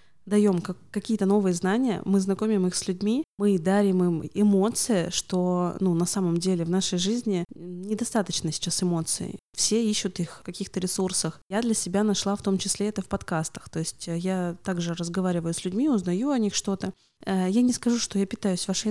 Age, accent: 20-39, native